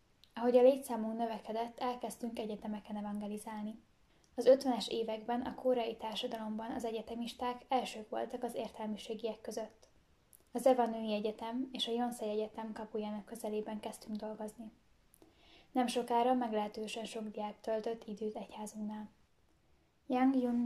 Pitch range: 215-240 Hz